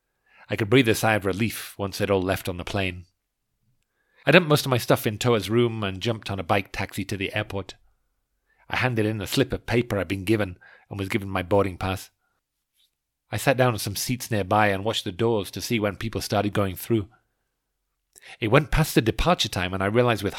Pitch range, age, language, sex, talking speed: 95-115 Hz, 40-59, English, male, 225 wpm